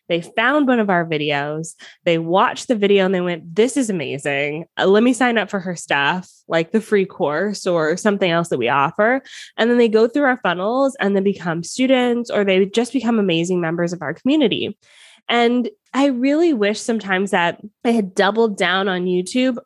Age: 20-39